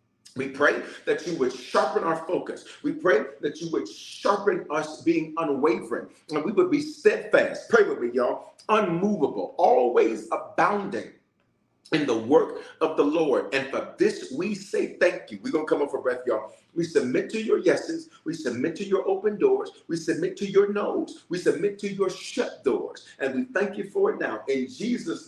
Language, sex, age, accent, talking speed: English, male, 40-59, American, 190 wpm